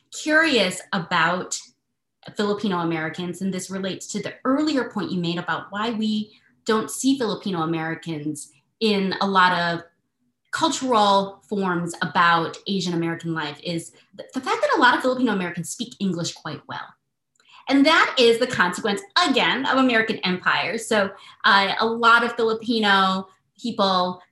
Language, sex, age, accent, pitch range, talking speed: English, female, 20-39, American, 185-235 Hz, 145 wpm